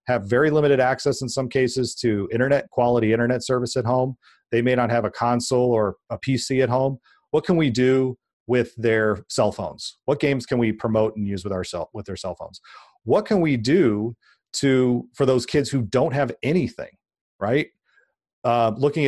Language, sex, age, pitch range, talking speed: English, male, 40-59, 110-130 Hz, 195 wpm